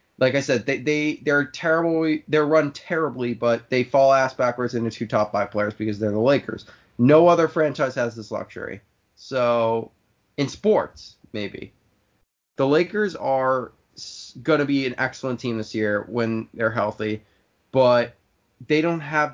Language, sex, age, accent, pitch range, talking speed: English, male, 20-39, American, 115-135 Hz, 145 wpm